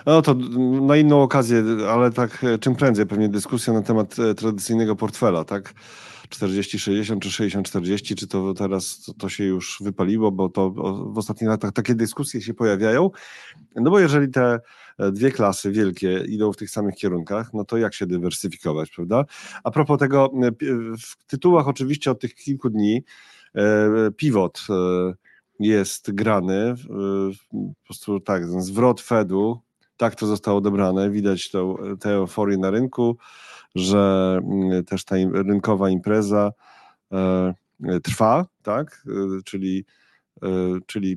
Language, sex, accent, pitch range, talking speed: Polish, male, native, 95-115 Hz, 130 wpm